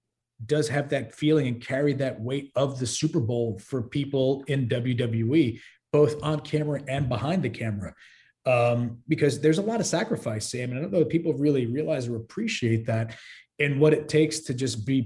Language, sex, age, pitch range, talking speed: English, male, 30-49, 120-150 Hz, 195 wpm